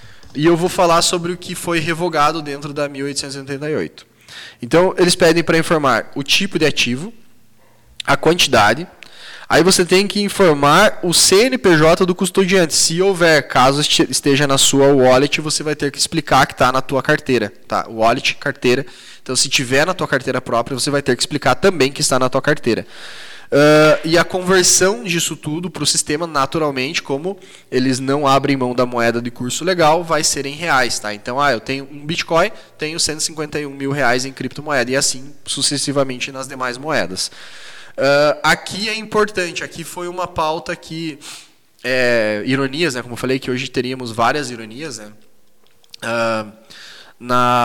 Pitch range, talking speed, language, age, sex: 130-165 Hz, 170 wpm, Portuguese, 10-29, male